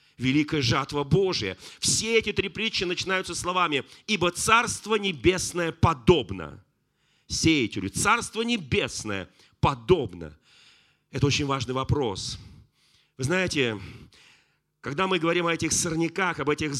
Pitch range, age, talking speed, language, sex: 145-185 Hz, 40-59, 110 wpm, Russian, male